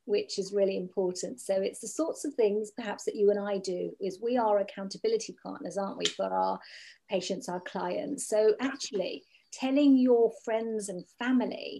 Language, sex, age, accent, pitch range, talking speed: English, female, 40-59, British, 195-255 Hz, 180 wpm